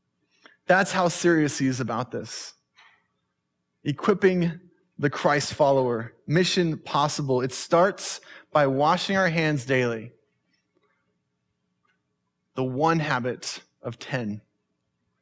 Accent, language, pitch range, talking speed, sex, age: American, English, 130-165 Hz, 100 wpm, male, 20-39